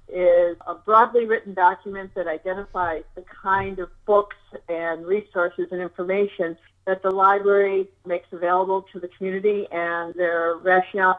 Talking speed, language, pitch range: 140 wpm, English, 175-205 Hz